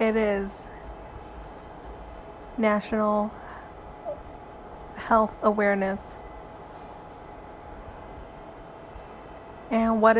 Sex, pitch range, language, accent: female, 195-220 Hz, English, American